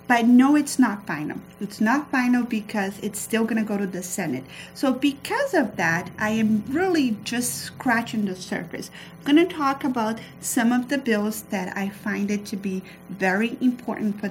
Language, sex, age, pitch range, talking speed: English, female, 30-49, 195-240 Hz, 190 wpm